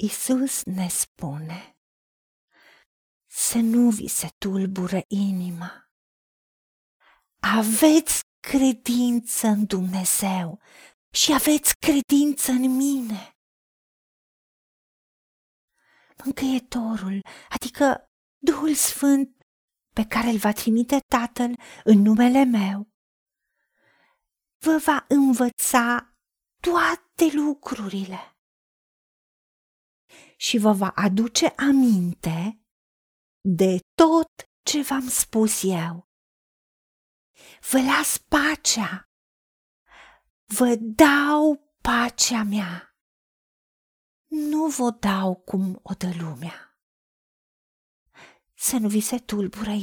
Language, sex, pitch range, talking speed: Romanian, female, 195-275 Hz, 80 wpm